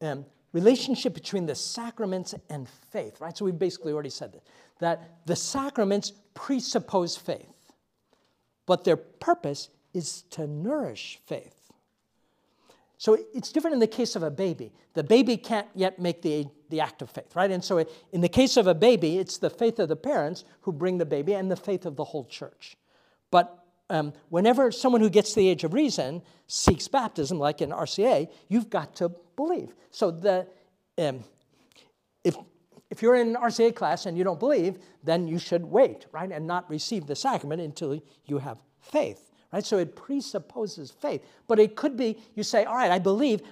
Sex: male